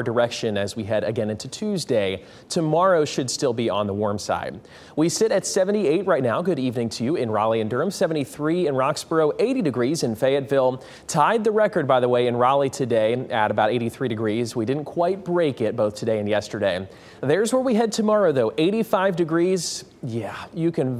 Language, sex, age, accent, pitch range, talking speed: English, male, 30-49, American, 115-175 Hz, 195 wpm